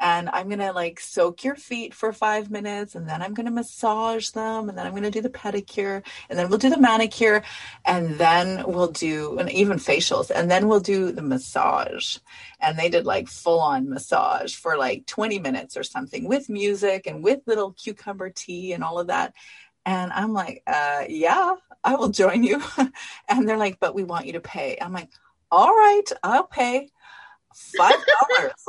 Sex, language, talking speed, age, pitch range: female, English, 195 wpm, 30-49, 180-255 Hz